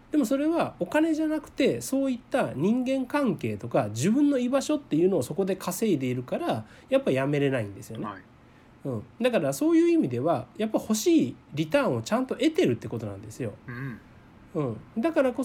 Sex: male